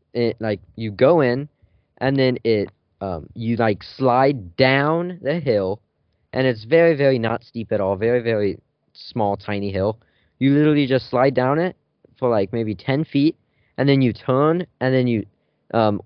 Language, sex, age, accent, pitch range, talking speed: English, male, 20-39, American, 105-135 Hz, 175 wpm